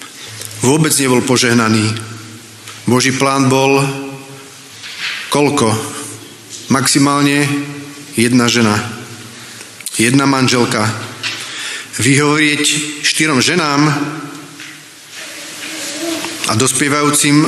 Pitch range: 120-145 Hz